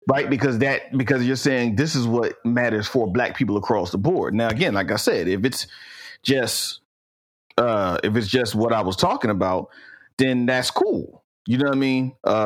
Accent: American